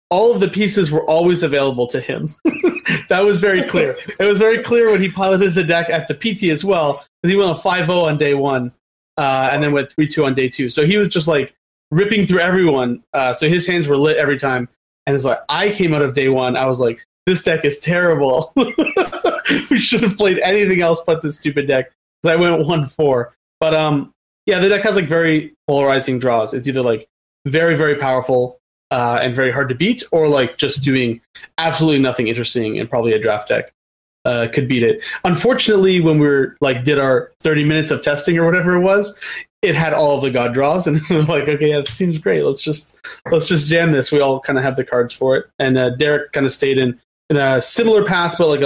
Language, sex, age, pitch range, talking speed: English, male, 30-49, 135-180 Hz, 230 wpm